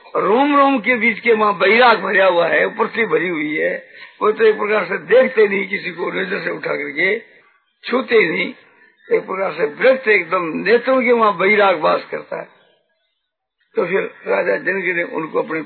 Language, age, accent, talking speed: Hindi, 50-69, native, 185 wpm